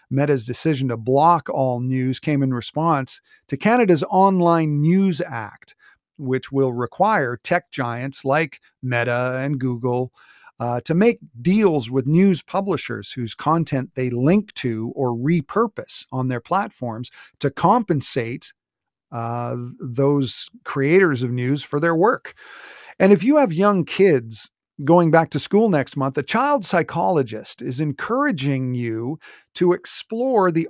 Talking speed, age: 140 wpm, 40-59